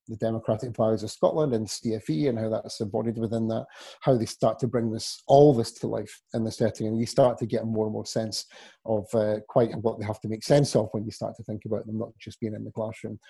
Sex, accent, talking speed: male, British, 260 wpm